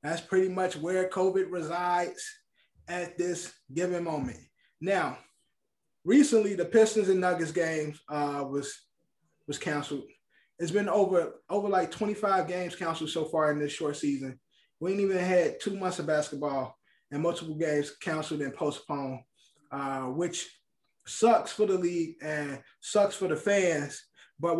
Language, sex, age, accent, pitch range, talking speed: English, male, 20-39, American, 155-195 Hz, 145 wpm